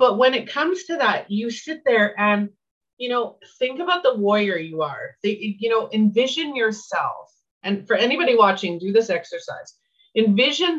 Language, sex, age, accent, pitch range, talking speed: English, female, 30-49, American, 180-235 Hz, 165 wpm